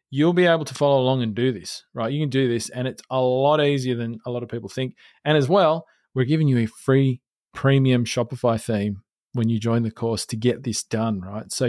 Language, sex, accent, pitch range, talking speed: English, male, Australian, 115-145 Hz, 240 wpm